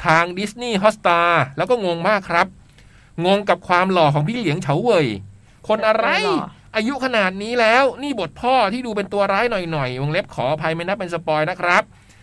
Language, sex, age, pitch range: Thai, male, 60-79, 150-210 Hz